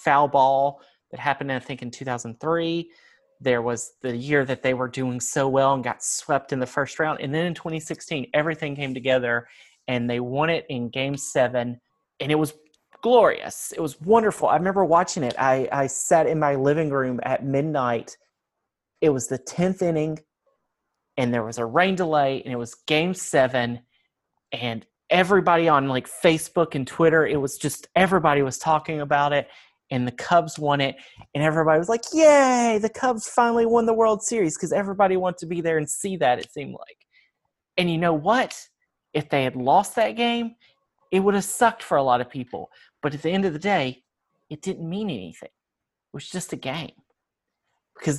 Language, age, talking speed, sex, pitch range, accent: English, 30-49, 195 wpm, male, 135-180 Hz, American